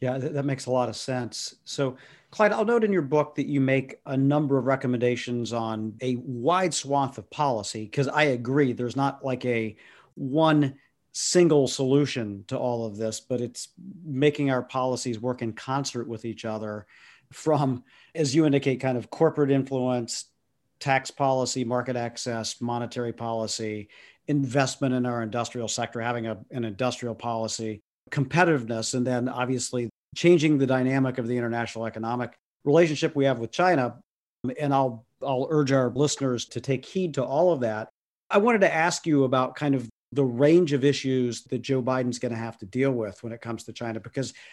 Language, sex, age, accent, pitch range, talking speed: English, male, 50-69, American, 120-140 Hz, 175 wpm